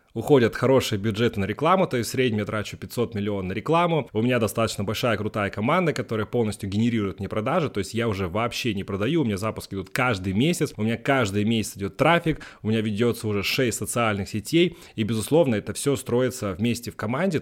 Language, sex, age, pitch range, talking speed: Russian, male, 30-49, 105-140 Hz, 205 wpm